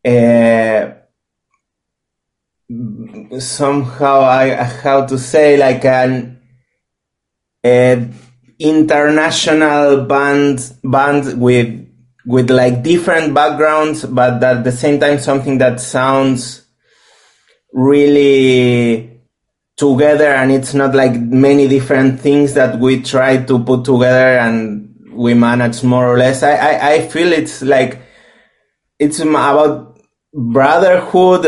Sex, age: male, 30-49